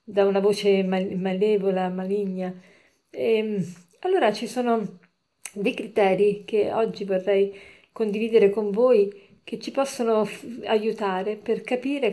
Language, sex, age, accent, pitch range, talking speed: Italian, female, 40-59, native, 195-230 Hz, 110 wpm